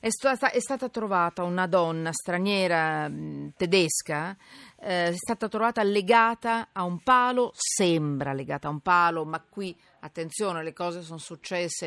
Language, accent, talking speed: Italian, native, 145 wpm